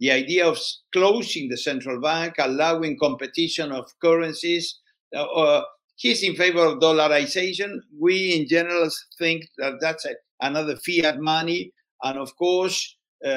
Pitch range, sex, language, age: 140-170 Hz, male, English, 60-79